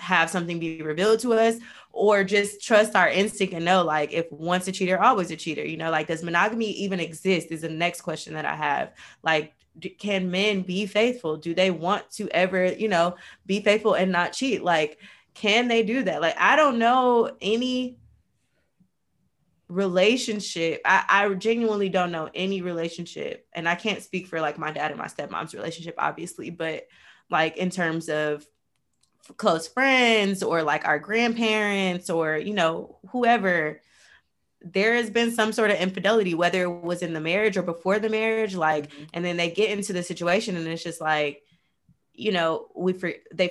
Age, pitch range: 20-39, 170-220 Hz